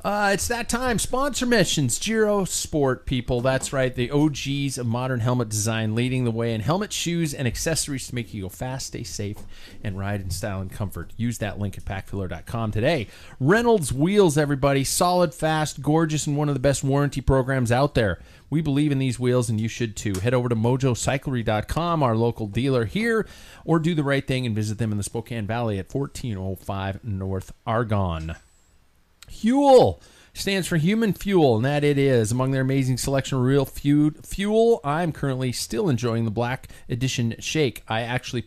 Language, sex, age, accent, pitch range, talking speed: English, male, 40-59, American, 110-150 Hz, 185 wpm